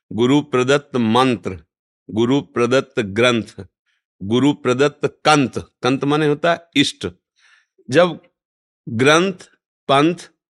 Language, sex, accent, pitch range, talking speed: Hindi, male, native, 105-140 Hz, 95 wpm